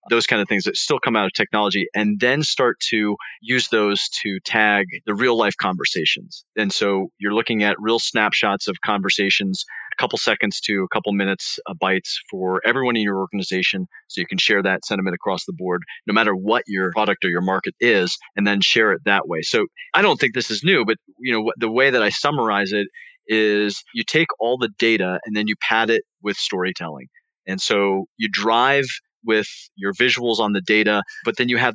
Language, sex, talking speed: English, male, 210 wpm